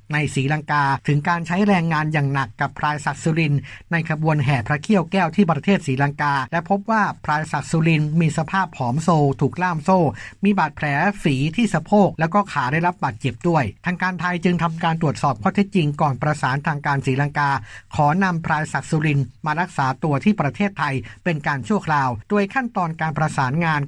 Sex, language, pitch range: male, Thai, 140-175 Hz